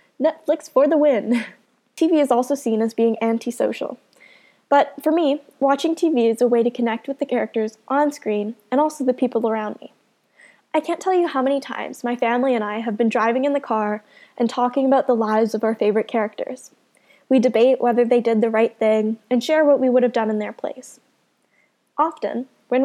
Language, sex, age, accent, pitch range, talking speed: English, female, 10-29, American, 225-280 Hz, 205 wpm